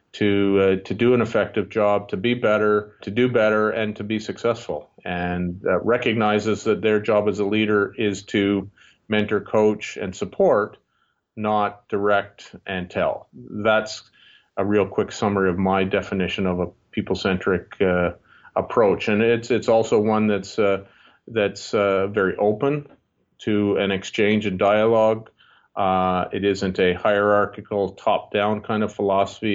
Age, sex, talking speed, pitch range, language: 40-59, male, 150 wpm, 100-110 Hz, English